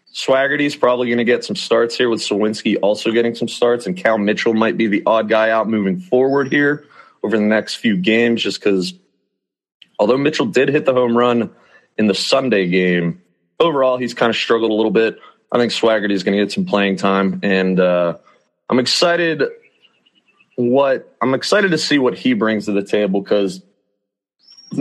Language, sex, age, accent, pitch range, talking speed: English, male, 30-49, American, 95-130 Hz, 190 wpm